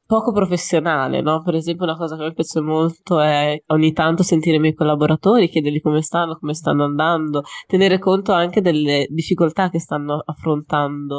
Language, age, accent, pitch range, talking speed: Italian, 20-39, native, 145-165 Hz, 170 wpm